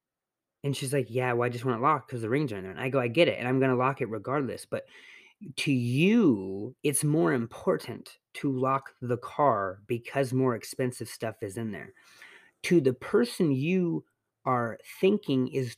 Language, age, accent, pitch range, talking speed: English, 30-49, American, 115-145 Hz, 200 wpm